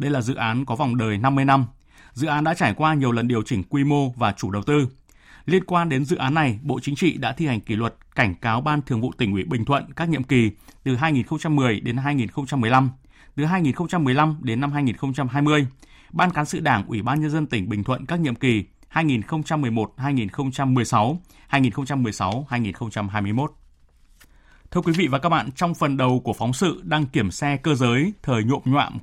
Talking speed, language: 195 wpm, Vietnamese